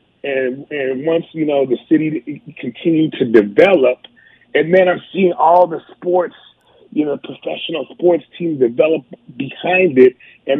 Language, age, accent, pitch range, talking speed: English, 30-49, American, 145-190 Hz, 145 wpm